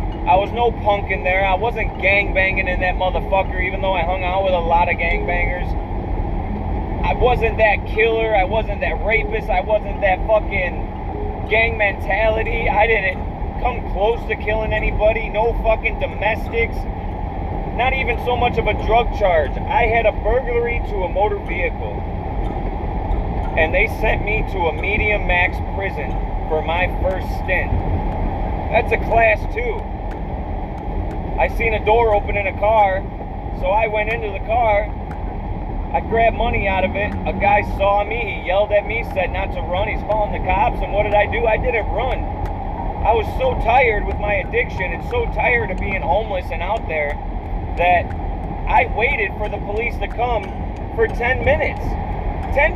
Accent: American